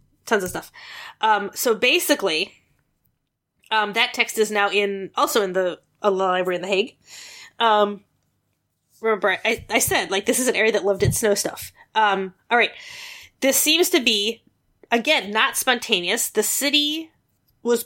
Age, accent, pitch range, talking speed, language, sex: 20-39, American, 200-255 Hz, 165 wpm, English, female